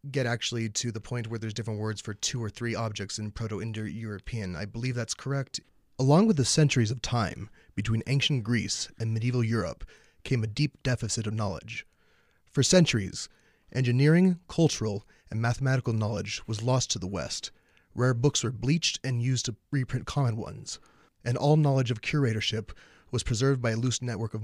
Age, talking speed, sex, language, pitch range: 30-49, 175 wpm, male, English, 110-135 Hz